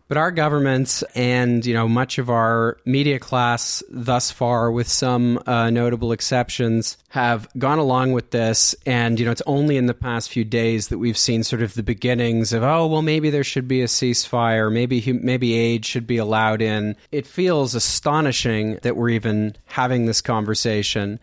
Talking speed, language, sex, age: 185 wpm, English, male, 30-49